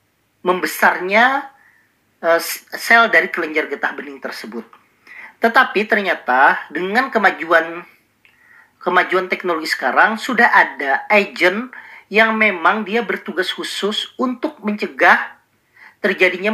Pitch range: 170-220 Hz